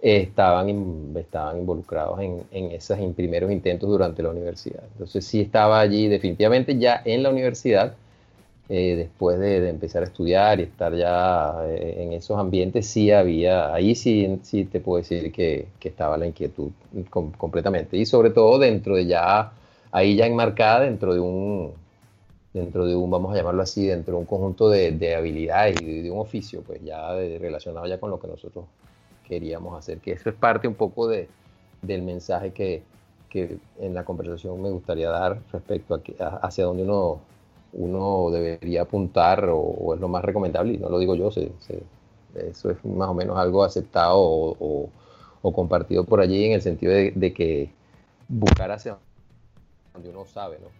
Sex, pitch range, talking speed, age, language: male, 85-100 Hz, 190 wpm, 30-49, Spanish